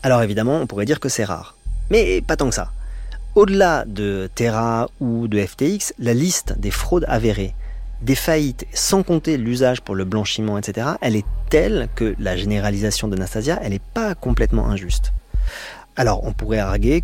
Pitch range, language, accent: 100-135 Hz, French, French